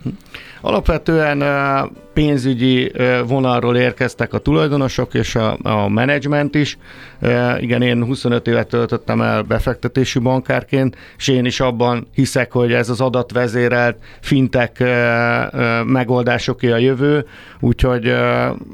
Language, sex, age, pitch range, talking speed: Hungarian, male, 50-69, 120-135 Hz, 100 wpm